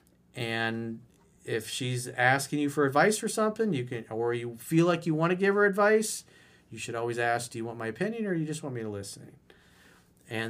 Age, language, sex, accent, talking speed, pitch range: 40-59, English, male, American, 225 wpm, 115-160 Hz